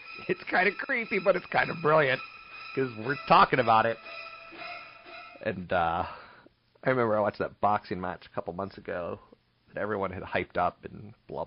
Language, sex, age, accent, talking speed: English, male, 40-59, American, 180 wpm